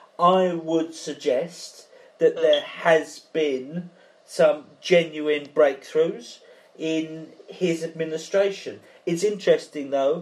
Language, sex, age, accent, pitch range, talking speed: English, male, 40-59, British, 135-185 Hz, 95 wpm